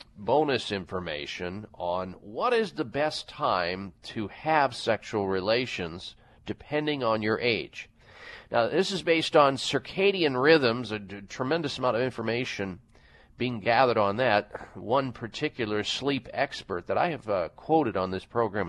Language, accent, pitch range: English, American, 105-155 Hz